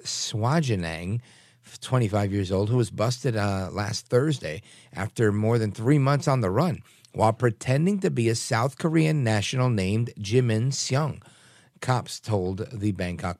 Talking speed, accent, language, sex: 150 wpm, American, English, male